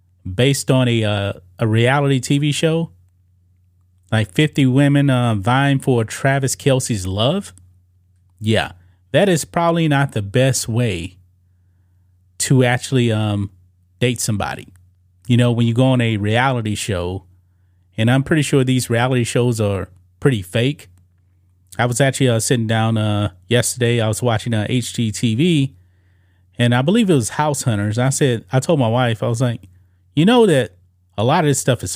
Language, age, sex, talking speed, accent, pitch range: English, 30-49, male, 165 wpm, American, 90-135 Hz